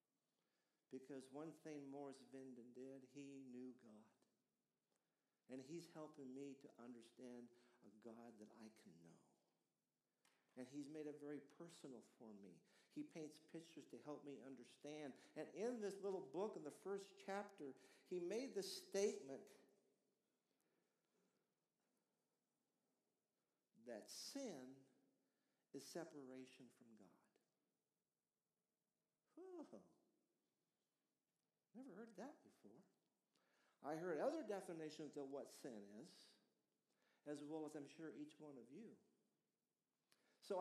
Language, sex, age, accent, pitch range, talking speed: English, male, 50-69, American, 135-195 Hz, 115 wpm